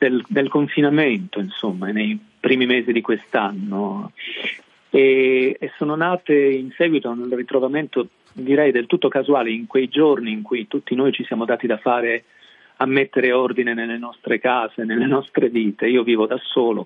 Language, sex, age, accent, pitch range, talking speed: Italian, male, 40-59, native, 120-155 Hz, 165 wpm